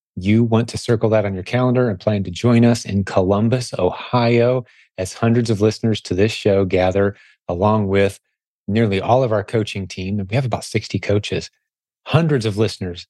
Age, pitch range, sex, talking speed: 30-49, 95-115 Hz, male, 185 wpm